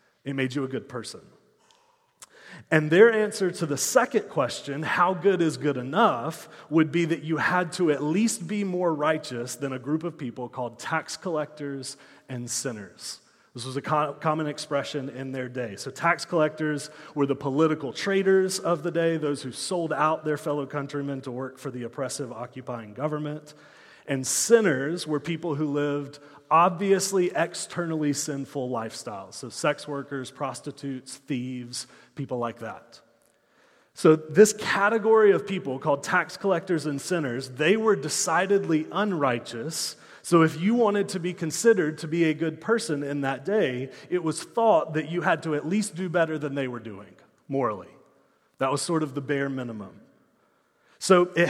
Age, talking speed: 30-49, 165 wpm